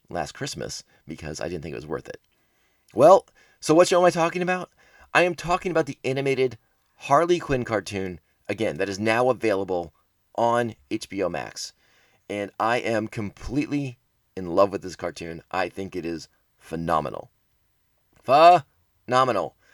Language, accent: English, American